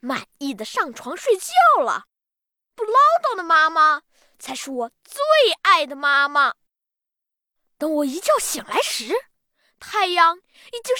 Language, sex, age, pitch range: Chinese, female, 20-39, 290-410 Hz